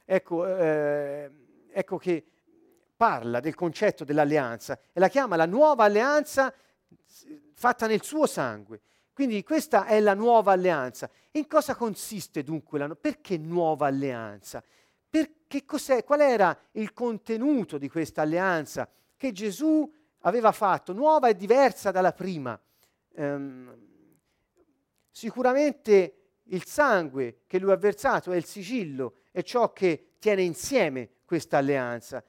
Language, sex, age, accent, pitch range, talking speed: Italian, male, 40-59, native, 155-235 Hz, 130 wpm